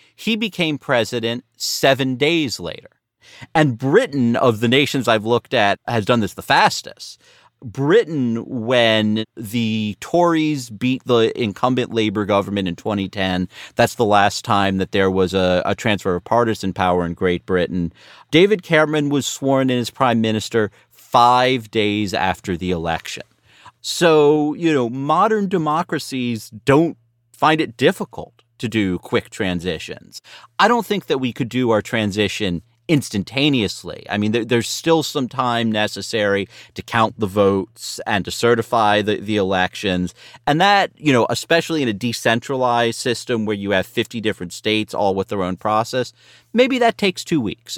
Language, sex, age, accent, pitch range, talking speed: English, male, 40-59, American, 100-140 Hz, 155 wpm